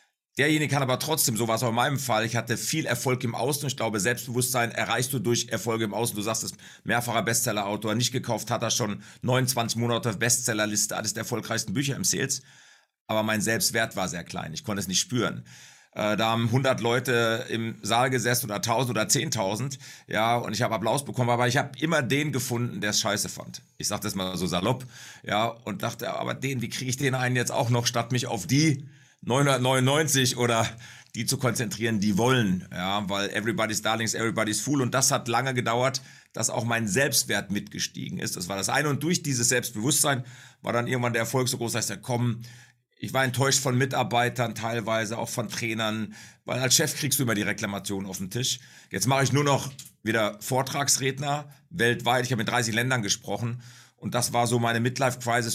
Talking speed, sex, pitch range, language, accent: 205 wpm, male, 110-130 Hz, German, German